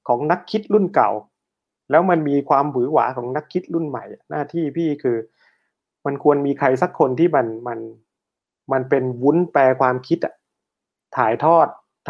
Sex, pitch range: male, 130-165 Hz